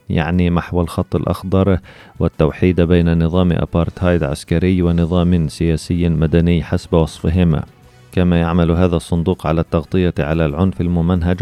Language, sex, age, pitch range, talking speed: Arabic, male, 30-49, 85-90 Hz, 120 wpm